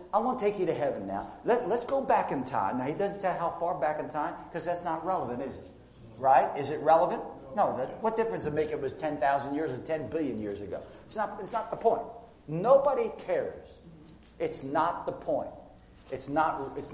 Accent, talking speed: American, 225 wpm